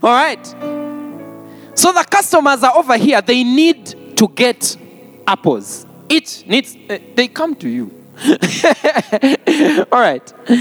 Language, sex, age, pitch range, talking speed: English, male, 20-39, 215-310 Hz, 125 wpm